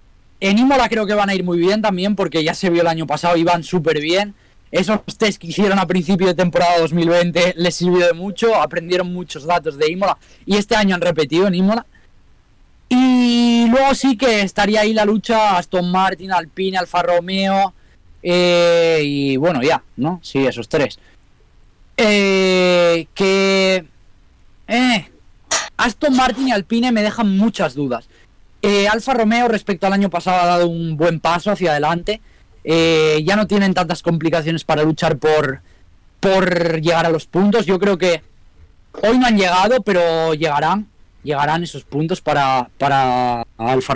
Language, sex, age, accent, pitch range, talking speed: Spanish, male, 20-39, Spanish, 150-200 Hz, 165 wpm